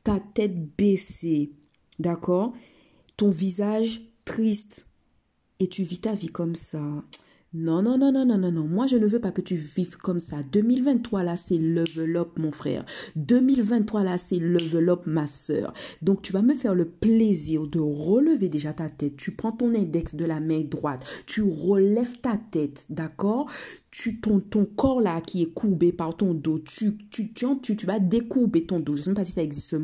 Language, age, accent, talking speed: French, 50-69, French, 195 wpm